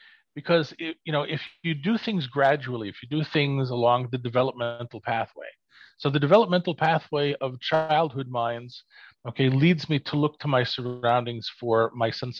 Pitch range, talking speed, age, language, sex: 120-155 Hz, 165 wpm, 40-59, English, male